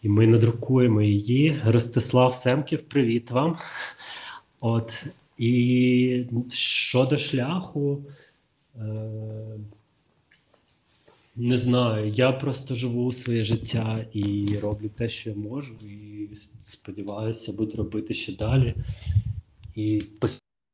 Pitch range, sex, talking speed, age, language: 110-130 Hz, male, 95 wpm, 20-39, Ukrainian